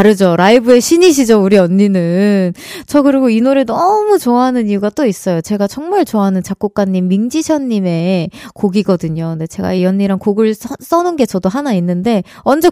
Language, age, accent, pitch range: Korean, 20-39, native, 200-285 Hz